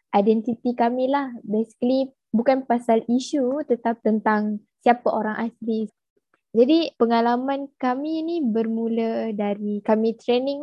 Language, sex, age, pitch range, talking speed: English, female, 10-29, 220-265 Hz, 105 wpm